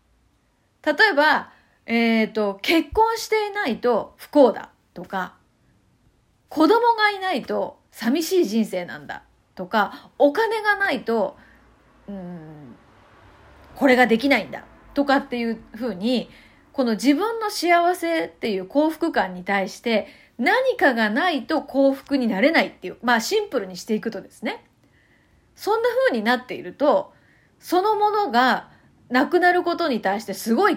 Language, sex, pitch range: Japanese, female, 220-330 Hz